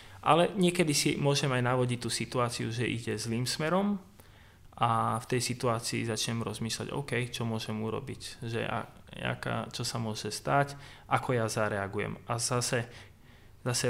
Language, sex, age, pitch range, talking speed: Slovak, male, 20-39, 105-120 Hz, 150 wpm